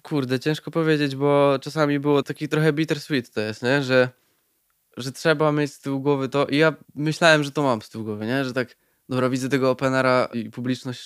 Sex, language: male, Polish